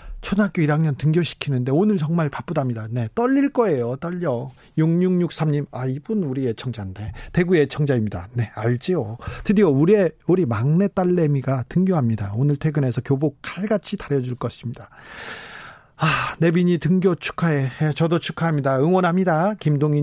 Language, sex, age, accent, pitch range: Korean, male, 40-59, native, 130-180 Hz